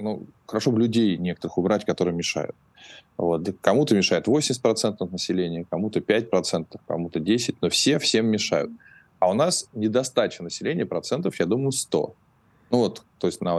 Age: 20-39